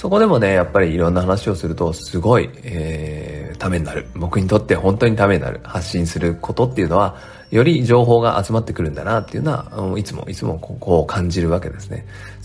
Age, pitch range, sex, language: 40-59, 85-120 Hz, male, Japanese